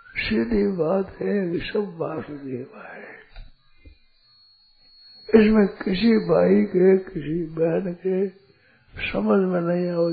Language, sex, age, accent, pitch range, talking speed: Hindi, male, 60-79, native, 160-210 Hz, 100 wpm